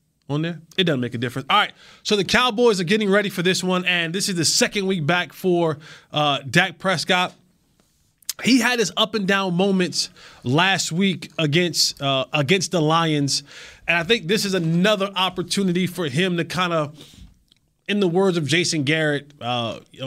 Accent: American